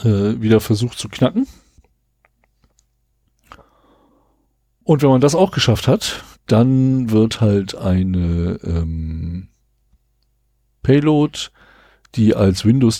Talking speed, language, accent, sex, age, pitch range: 90 wpm, German, German, male, 50-69, 95-120 Hz